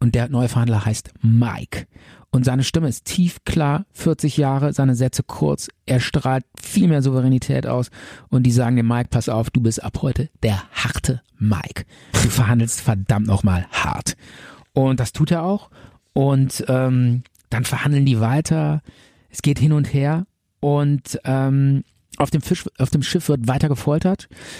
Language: German